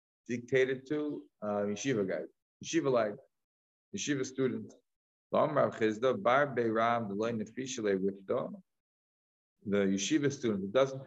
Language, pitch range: English, 100-125 Hz